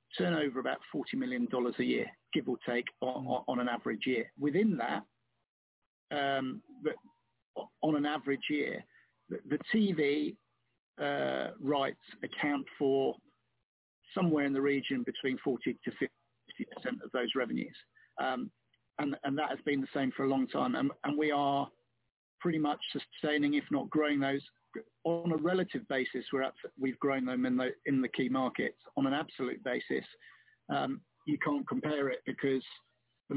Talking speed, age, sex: 160 wpm, 50-69, male